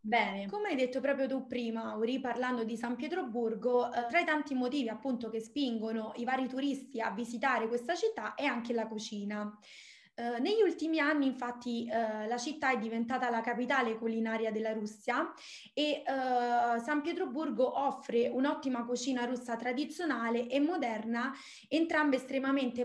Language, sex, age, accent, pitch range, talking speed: Italian, female, 20-39, native, 235-280 Hz, 145 wpm